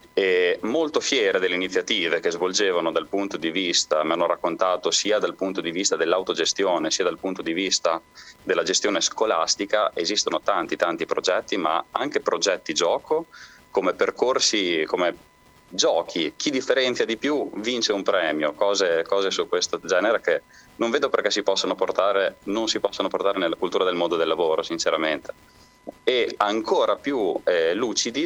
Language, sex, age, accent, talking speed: Italian, male, 30-49, native, 155 wpm